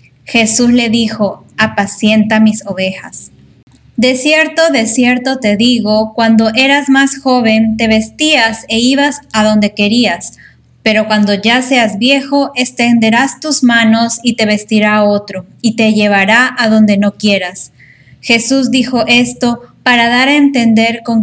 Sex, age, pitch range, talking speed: female, 20-39, 205-250 Hz, 140 wpm